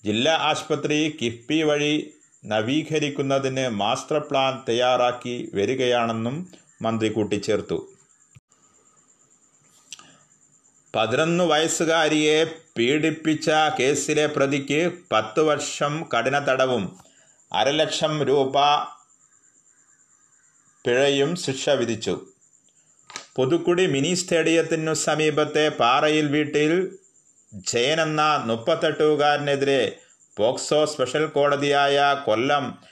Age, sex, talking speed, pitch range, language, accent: 30-49, male, 65 wpm, 130-155 Hz, Malayalam, native